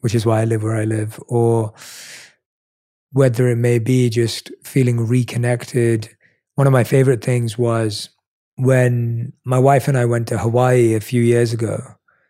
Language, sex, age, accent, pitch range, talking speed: English, male, 30-49, British, 115-130 Hz, 165 wpm